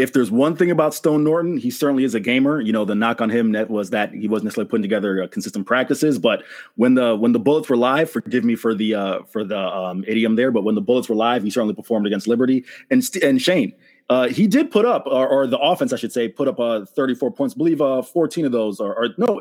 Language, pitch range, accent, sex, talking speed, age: English, 120-165 Hz, American, male, 270 wpm, 30-49